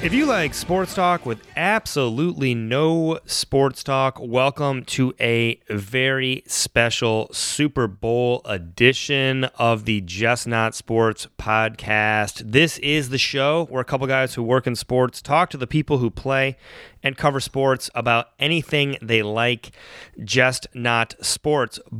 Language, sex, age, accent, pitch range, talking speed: English, male, 30-49, American, 115-145 Hz, 140 wpm